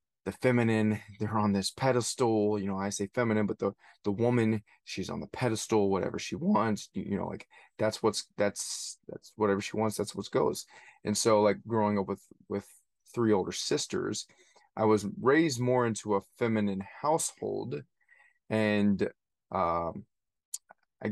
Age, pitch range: 20-39, 100-110 Hz